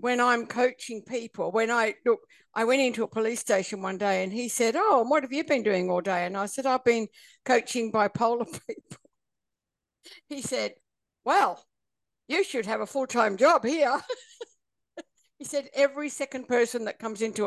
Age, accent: 60-79, British